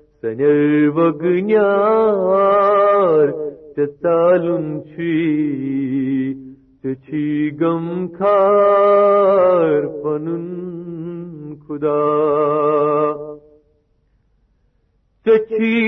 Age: 50-69